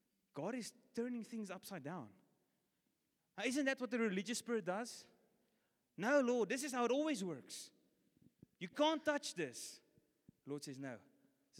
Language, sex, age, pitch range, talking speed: English, male, 20-39, 155-230 Hz, 160 wpm